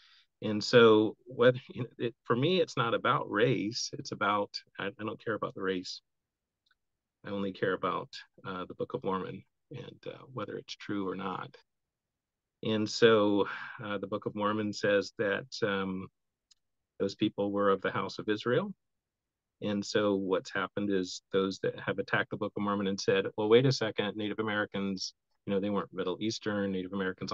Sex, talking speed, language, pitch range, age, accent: male, 175 wpm, English, 95-105 Hz, 40-59, American